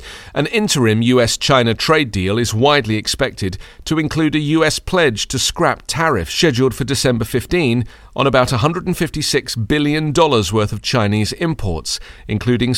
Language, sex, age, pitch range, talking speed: English, male, 40-59, 110-145 Hz, 135 wpm